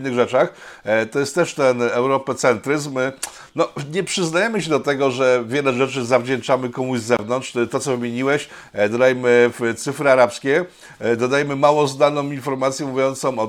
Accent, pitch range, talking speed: native, 120-150 Hz, 150 wpm